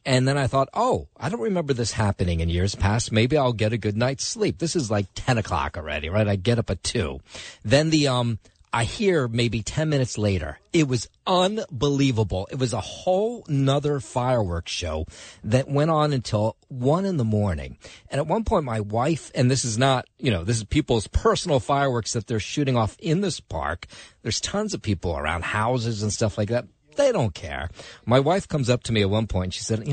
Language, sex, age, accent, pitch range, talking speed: English, male, 40-59, American, 100-140 Hz, 215 wpm